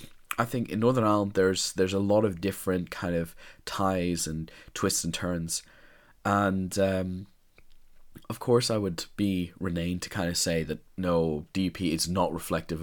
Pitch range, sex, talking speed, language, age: 85-95 Hz, male, 170 wpm, English, 20-39